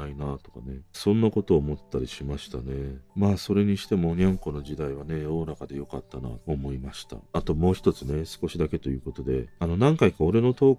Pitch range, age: 70-110 Hz, 40-59